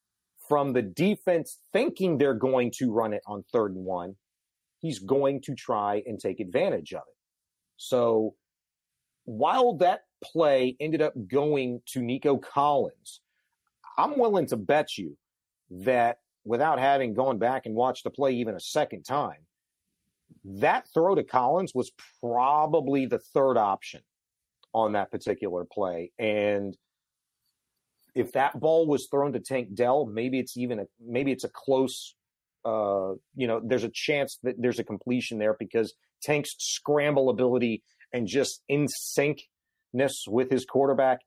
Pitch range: 115-140 Hz